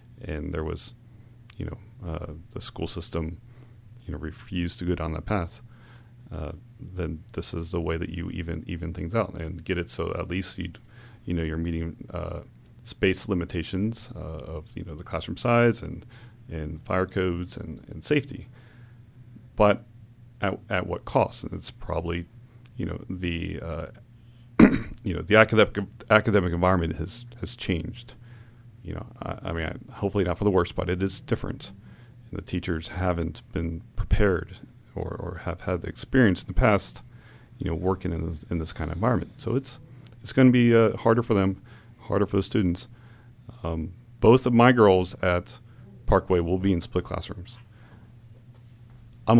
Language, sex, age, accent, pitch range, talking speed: English, male, 40-59, American, 85-120 Hz, 170 wpm